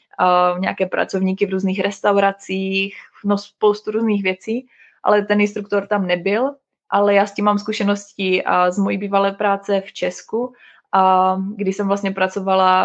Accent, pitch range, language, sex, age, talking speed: native, 190-205 Hz, Czech, female, 20-39, 160 wpm